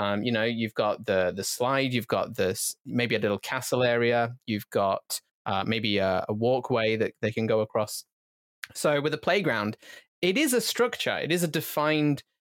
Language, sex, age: English, male, 20-39